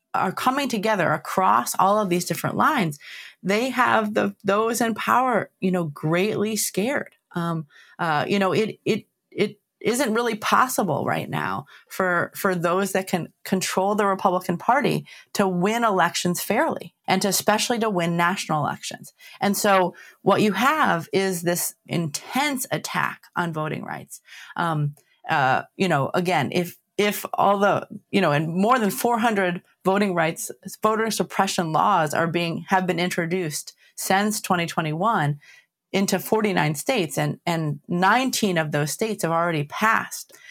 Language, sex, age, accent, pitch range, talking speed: English, female, 30-49, American, 170-215 Hz, 155 wpm